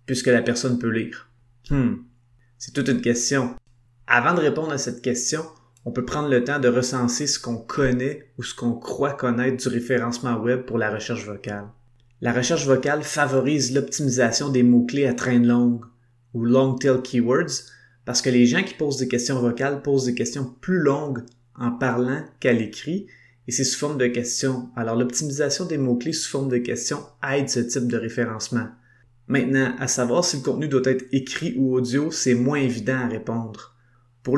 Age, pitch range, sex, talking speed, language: 30-49, 120-135 Hz, male, 185 wpm, French